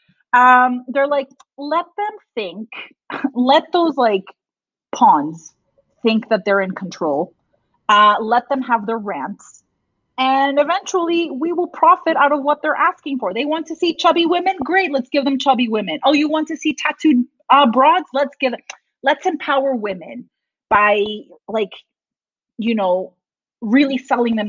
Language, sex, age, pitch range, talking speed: English, female, 30-49, 205-285 Hz, 155 wpm